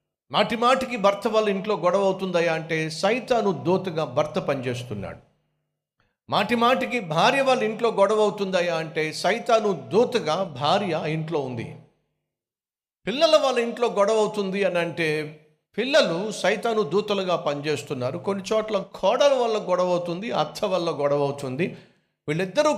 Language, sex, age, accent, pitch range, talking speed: Telugu, male, 50-69, native, 160-220 Hz, 125 wpm